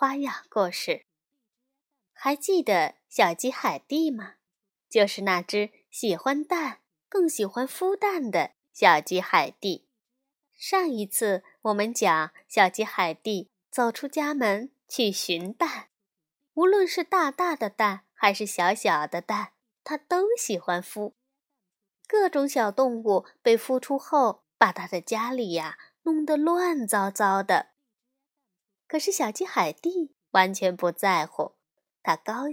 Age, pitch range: 20-39, 200-305 Hz